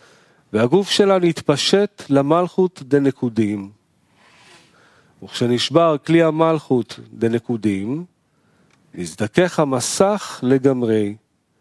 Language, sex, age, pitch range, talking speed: Hebrew, male, 40-59, 130-185 Hz, 60 wpm